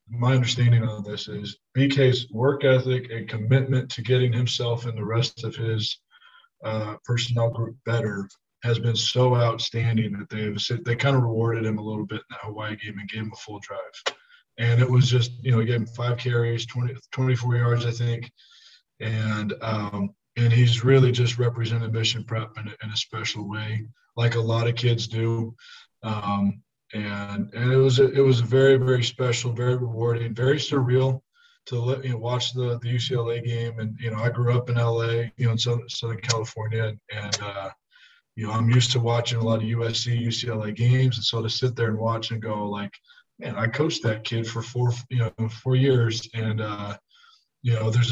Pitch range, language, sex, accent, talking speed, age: 110-125 Hz, English, male, American, 205 wpm, 20-39